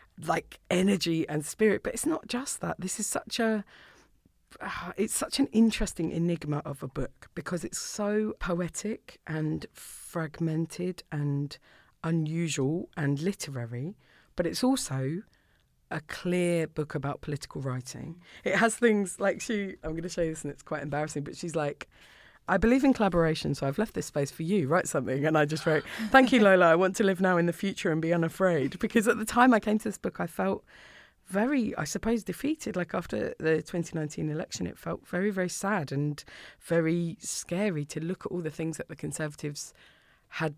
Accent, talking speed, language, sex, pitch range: British, 190 wpm, English, female, 150-200 Hz